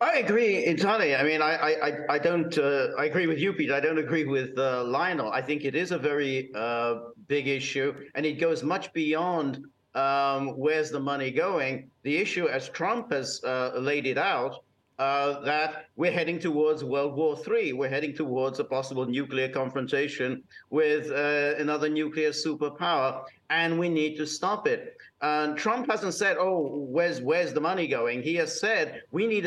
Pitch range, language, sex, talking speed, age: 135-160 Hz, English, male, 185 wpm, 50-69